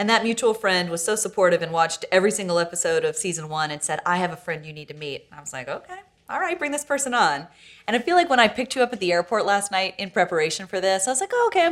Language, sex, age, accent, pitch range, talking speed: English, female, 30-49, American, 165-240 Hz, 305 wpm